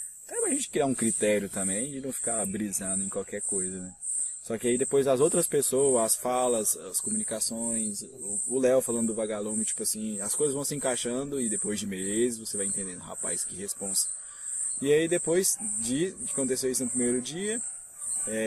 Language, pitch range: Portuguese, 105-130 Hz